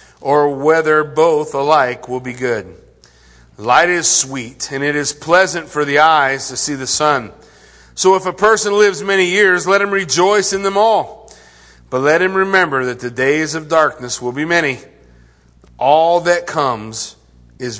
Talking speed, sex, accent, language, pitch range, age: 170 wpm, male, American, English, 130-185 Hz, 40-59